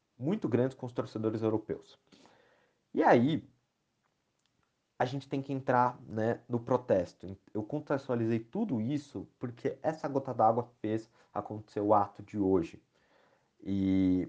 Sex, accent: male, Brazilian